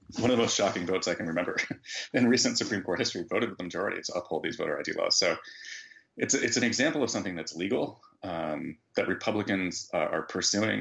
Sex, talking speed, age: male, 215 wpm, 30-49